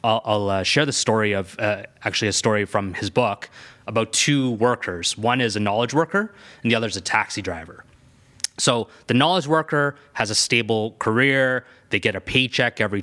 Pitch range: 105-130 Hz